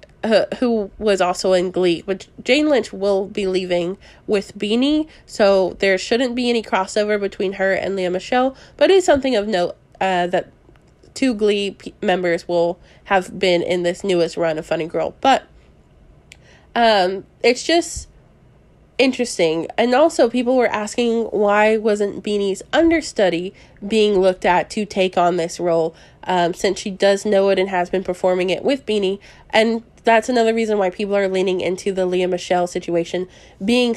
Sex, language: female, English